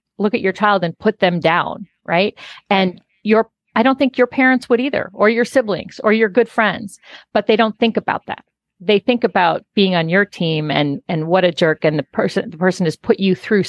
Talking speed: 230 wpm